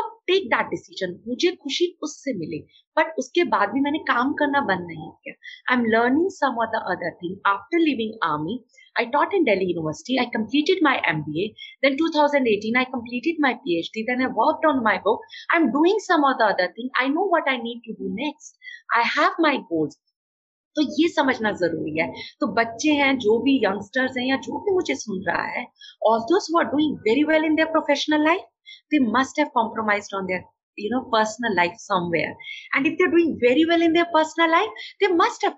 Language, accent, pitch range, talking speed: Hindi, native, 225-330 Hz, 210 wpm